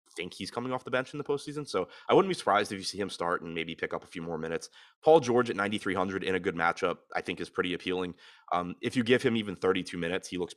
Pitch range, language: 85-105 Hz, English